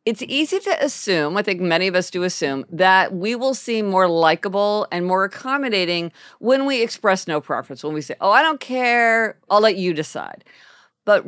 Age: 50-69